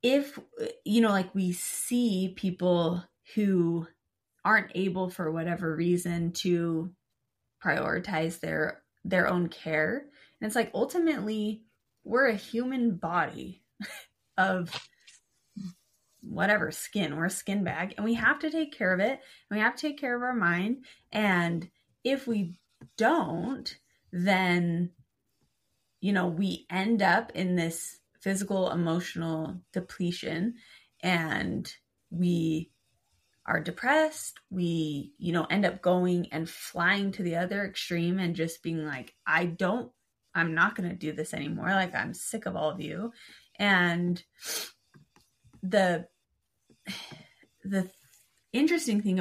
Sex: female